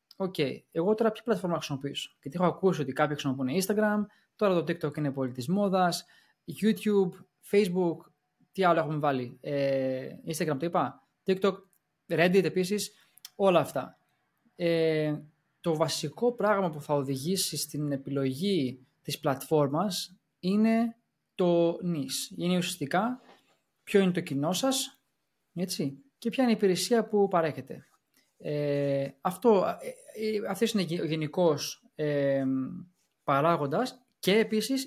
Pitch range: 150-195 Hz